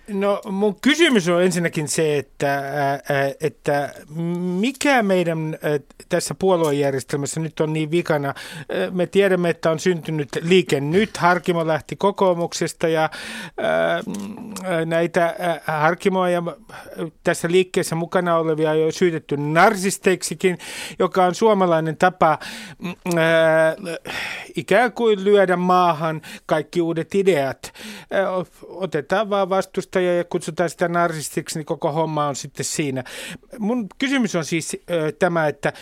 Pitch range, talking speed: 160-195 Hz, 115 wpm